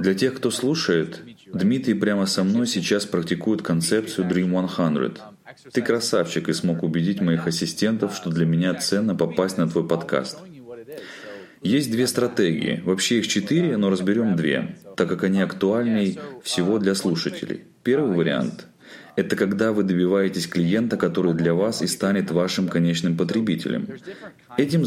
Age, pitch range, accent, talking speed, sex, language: 30-49, 90-110 Hz, native, 145 wpm, male, Russian